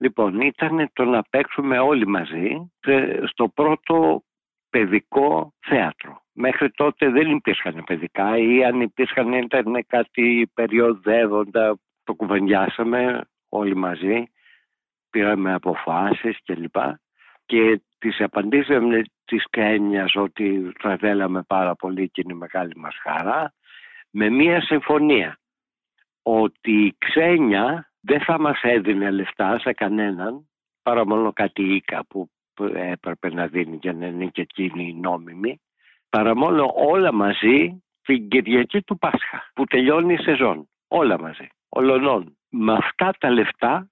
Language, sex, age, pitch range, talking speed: Greek, male, 60-79, 100-135 Hz, 125 wpm